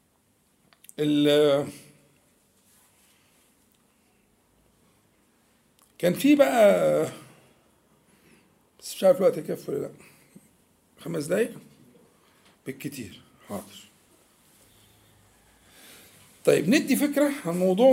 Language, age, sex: Arabic, 50-69, male